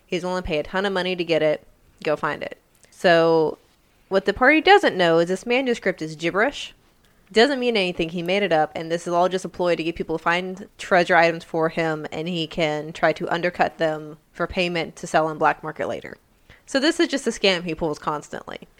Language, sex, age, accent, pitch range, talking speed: English, female, 20-39, American, 165-190 Hz, 230 wpm